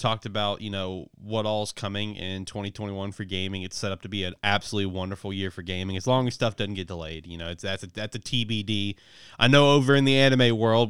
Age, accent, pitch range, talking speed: 20-39, American, 95-110 Hz, 240 wpm